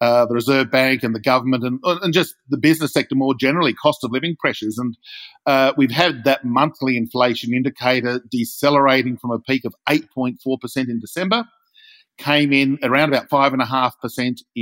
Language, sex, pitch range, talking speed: English, male, 125-150 Hz, 165 wpm